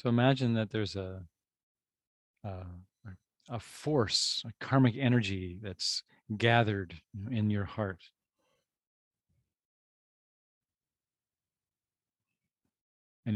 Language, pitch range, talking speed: English, 100-120 Hz, 75 wpm